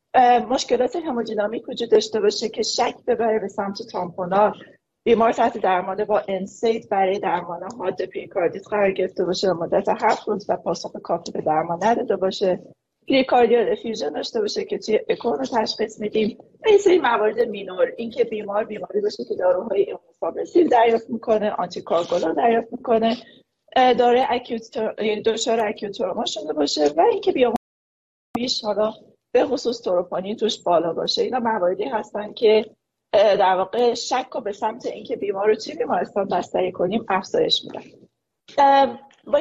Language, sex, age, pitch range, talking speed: Persian, female, 30-49, 200-245 Hz, 140 wpm